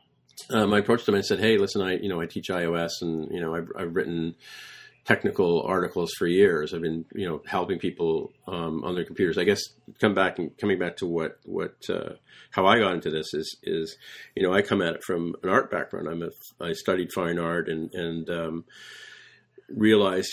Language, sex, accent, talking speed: English, male, American, 220 wpm